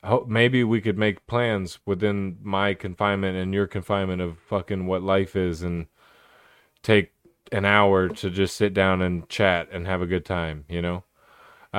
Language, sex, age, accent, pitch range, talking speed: English, male, 20-39, American, 95-110 Hz, 185 wpm